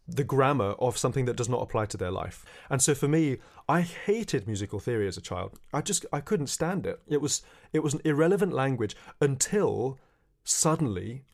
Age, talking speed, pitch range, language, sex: 30-49, 195 wpm, 115-150 Hz, English, male